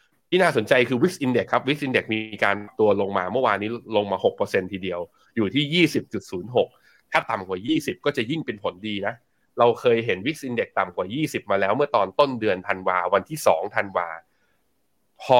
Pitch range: 105-130 Hz